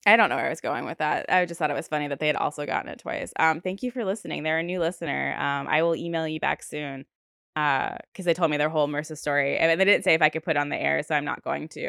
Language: English